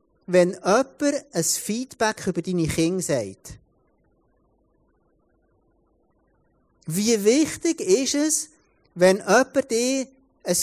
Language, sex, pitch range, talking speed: German, male, 175-245 Hz, 90 wpm